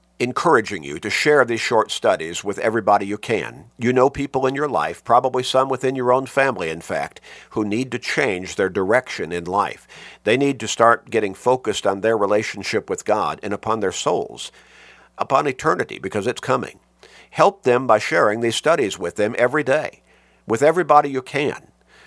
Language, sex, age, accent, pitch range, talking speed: English, male, 50-69, American, 110-145 Hz, 180 wpm